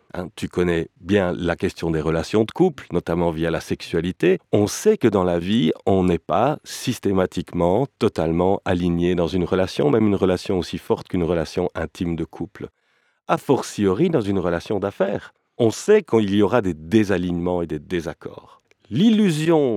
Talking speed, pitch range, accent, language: 170 wpm, 90-130 Hz, French, French